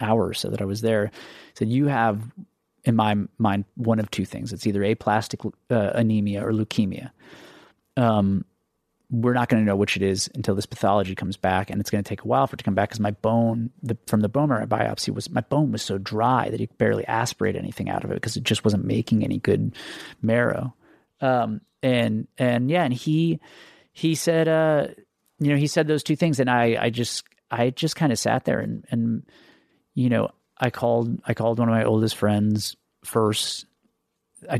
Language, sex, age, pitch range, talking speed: English, male, 30-49, 105-135 Hz, 210 wpm